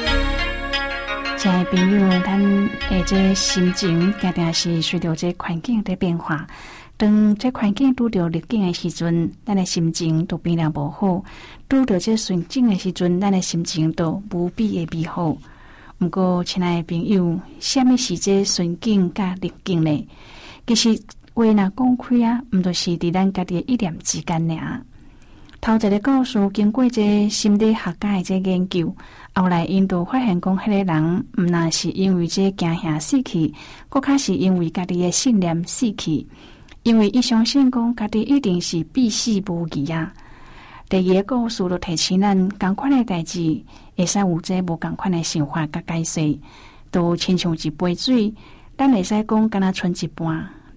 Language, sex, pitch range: Chinese, female, 170-215 Hz